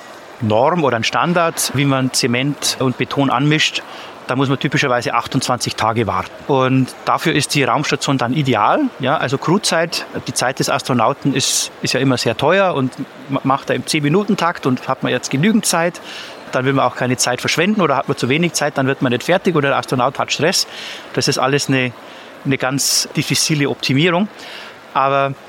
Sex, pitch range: male, 125-155 Hz